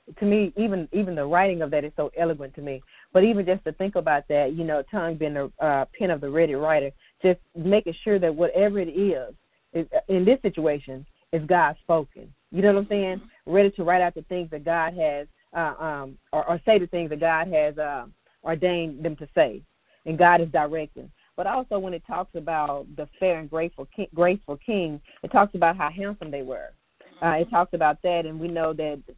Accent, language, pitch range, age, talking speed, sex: American, English, 155-185 Hz, 40-59, 215 wpm, female